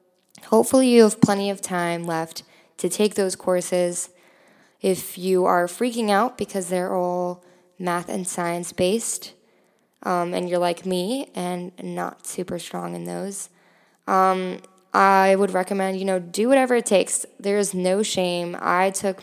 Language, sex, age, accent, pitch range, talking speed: English, female, 10-29, American, 180-205 Hz, 155 wpm